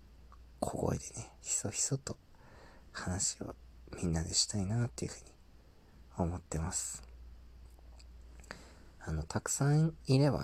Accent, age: native, 40-59